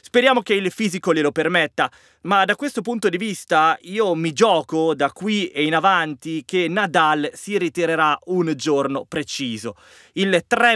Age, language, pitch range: 20-39, Italian, 145-205 Hz